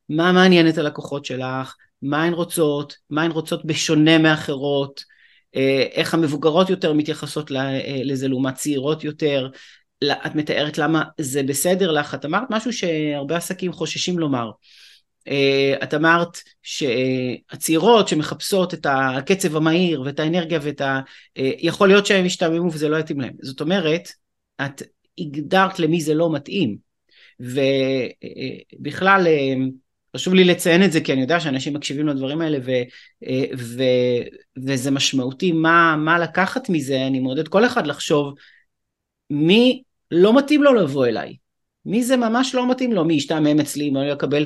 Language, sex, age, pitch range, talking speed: Hebrew, male, 30-49, 140-175 Hz, 140 wpm